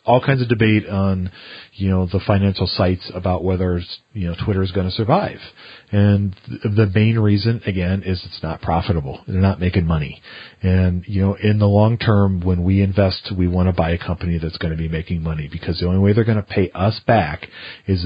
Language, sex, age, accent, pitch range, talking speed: English, male, 40-59, American, 90-105 Hz, 215 wpm